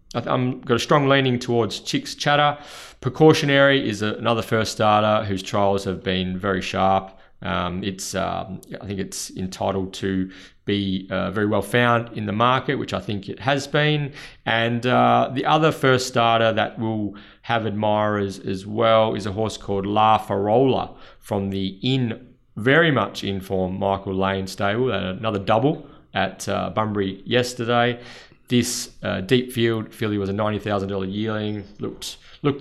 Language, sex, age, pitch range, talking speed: English, male, 30-49, 95-120 Hz, 155 wpm